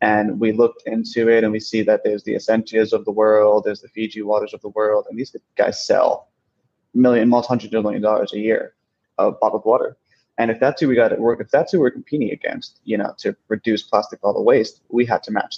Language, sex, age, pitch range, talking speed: English, male, 20-39, 105-115 Hz, 245 wpm